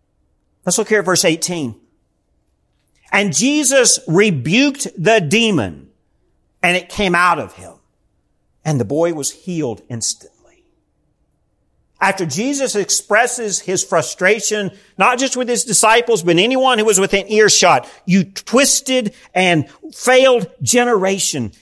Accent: American